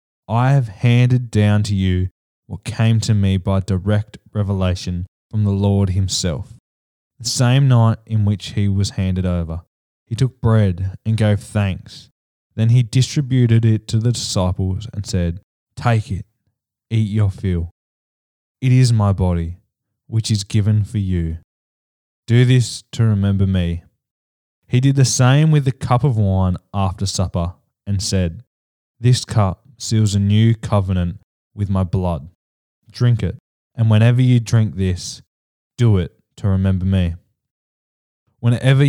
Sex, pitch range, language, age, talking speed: male, 95-115 Hz, English, 10-29, 145 wpm